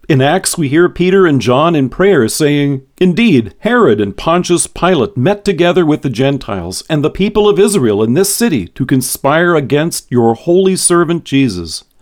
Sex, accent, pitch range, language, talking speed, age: male, American, 125-165 Hz, English, 175 wpm, 50-69